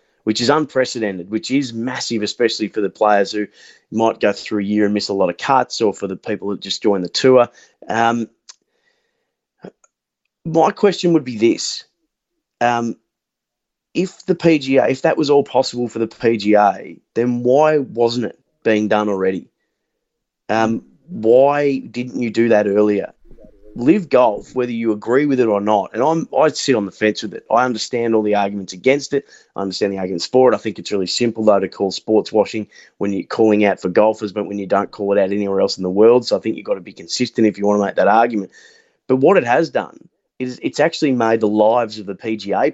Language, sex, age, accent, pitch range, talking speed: English, male, 30-49, Australian, 105-130 Hz, 215 wpm